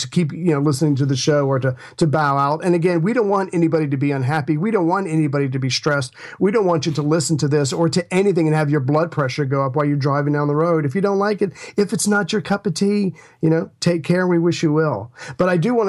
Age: 40-59